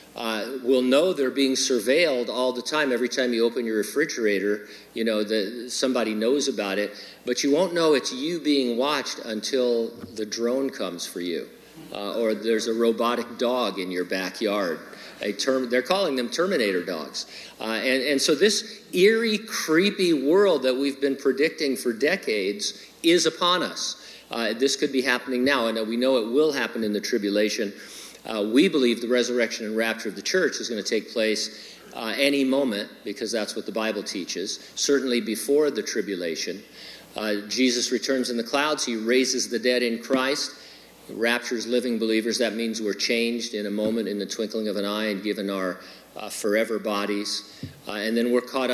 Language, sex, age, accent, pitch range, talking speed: English, male, 50-69, American, 105-135 Hz, 180 wpm